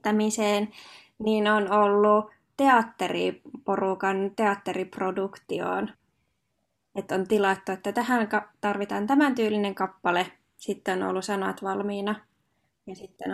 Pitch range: 200-235 Hz